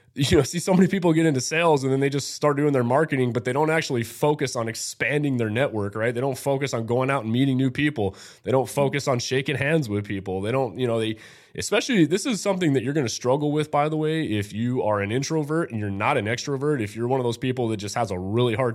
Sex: male